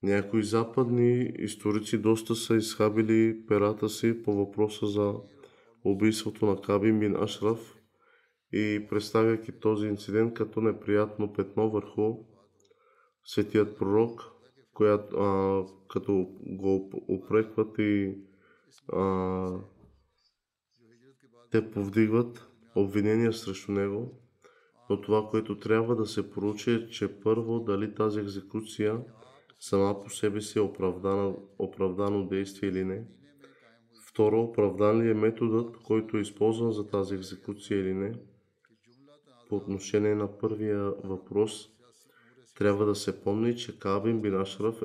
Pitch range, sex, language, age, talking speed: 100-115 Hz, male, Bulgarian, 20-39, 115 wpm